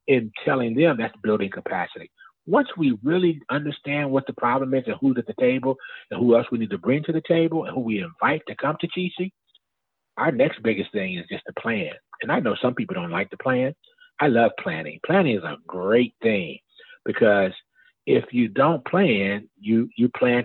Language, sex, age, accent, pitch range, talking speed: English, male, 40-59, American, 115-180 Hz, 205 wpm